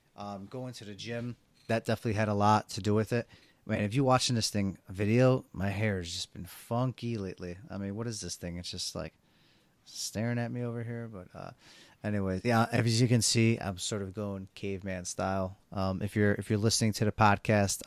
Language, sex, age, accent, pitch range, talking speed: English, male, 30-49, American, 95-110 Hz, 220 wpm